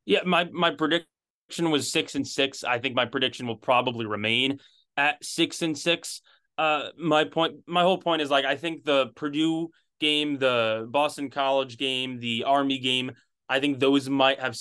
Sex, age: male, 20-39